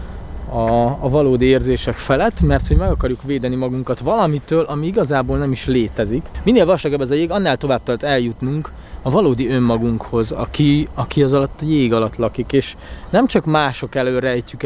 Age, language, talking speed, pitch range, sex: 20-39, Hungarian, 175 wpm, 120-145 Hz, male